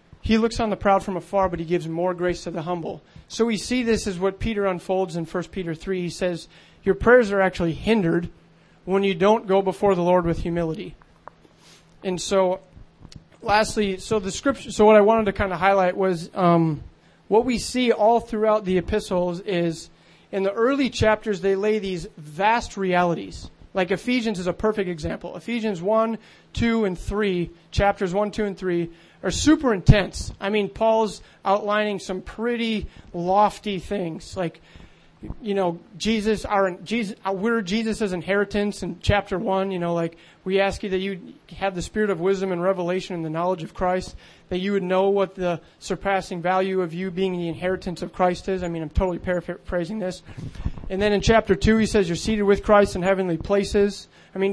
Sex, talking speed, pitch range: male, 190 wpm, 180-210 Hz